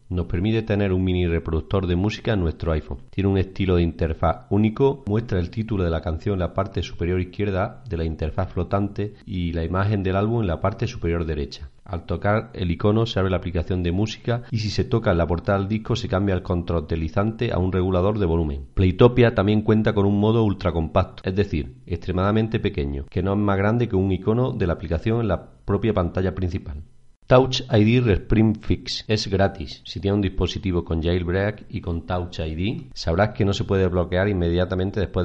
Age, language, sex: 40-59, Spanish, male